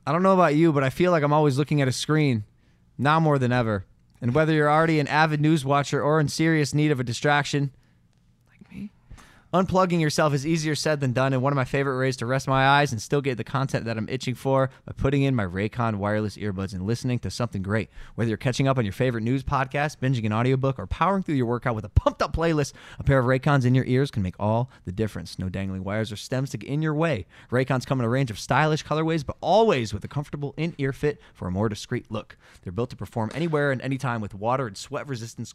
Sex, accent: male, American